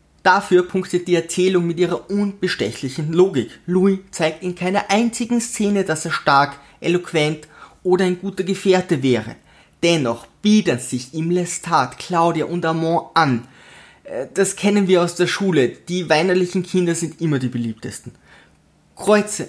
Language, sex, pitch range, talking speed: German, male, 160-195 Hz, 140 wpm